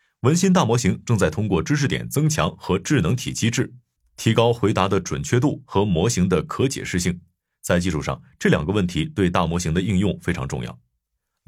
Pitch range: 95-125 Hz